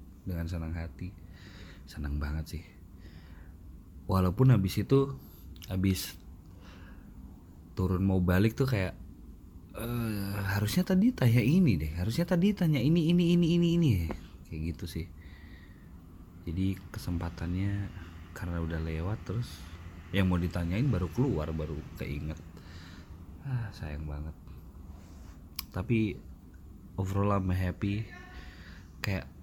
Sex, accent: male, native